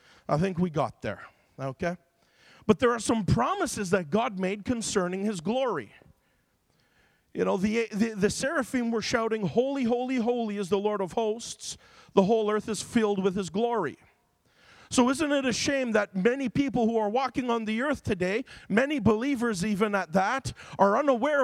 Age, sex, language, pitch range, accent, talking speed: 40-59, male, English, 185-245 Hz, American, 175 wpm